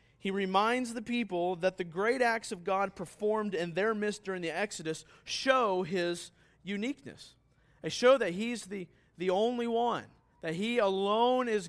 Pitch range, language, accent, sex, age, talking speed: 170-225 Hz, English, American, male, 40-59, 165 wpm